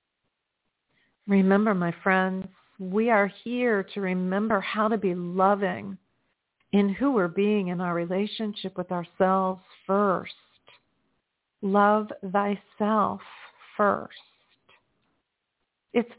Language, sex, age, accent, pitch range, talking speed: English, female, 50-69, American, 180-215 Hz, 95 wpm